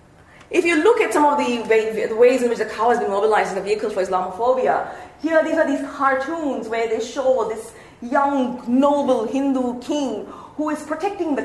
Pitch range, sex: 235-300 Hz, female